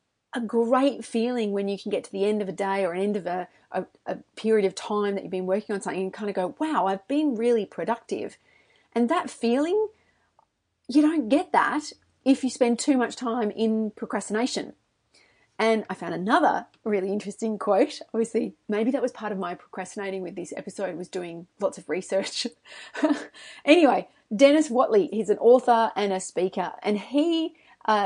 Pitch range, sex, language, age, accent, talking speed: 195-245 Hz, female, English, 30-49, Australian, 185 wpm